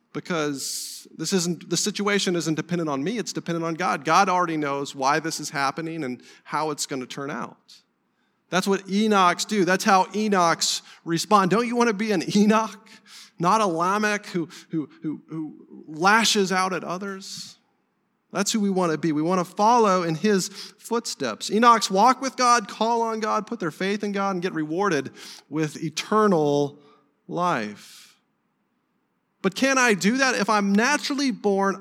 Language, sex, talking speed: English, male, 175 wpm